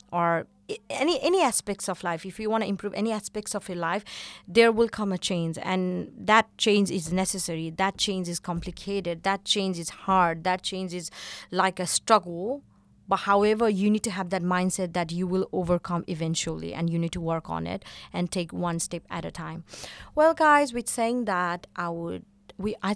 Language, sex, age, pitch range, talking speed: English, female, 30-49, 180-215 Hz, 200 wpm